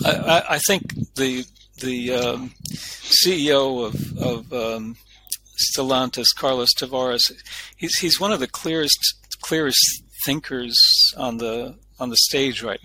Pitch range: 120-140 Hz